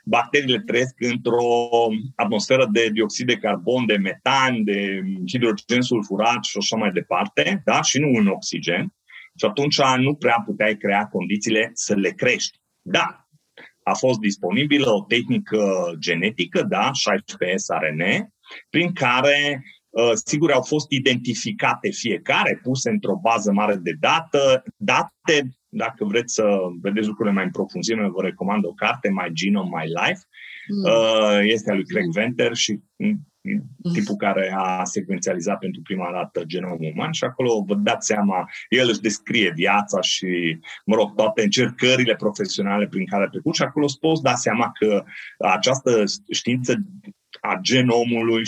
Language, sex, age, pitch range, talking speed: Romanian, male, 30-49, 105-130 Hz, 145 wpm